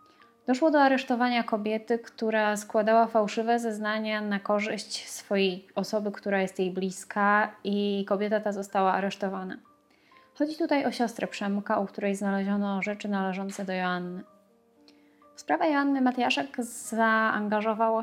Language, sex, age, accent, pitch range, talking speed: Polish, female, 20-39, native, 190-220 Hz, 125 wpm